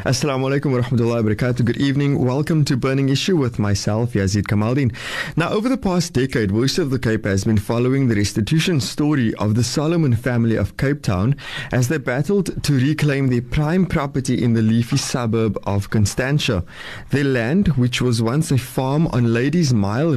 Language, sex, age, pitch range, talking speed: English, male, 20-39, 110-145 Hz, 180 wpm